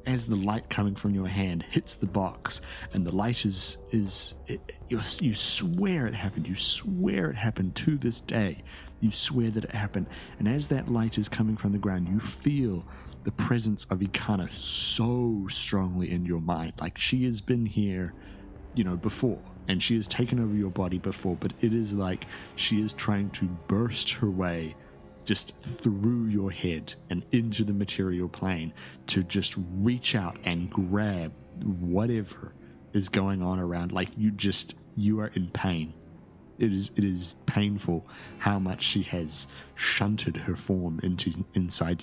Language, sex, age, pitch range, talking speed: English, male, 30-49, 90-110 Hz, 170 wpm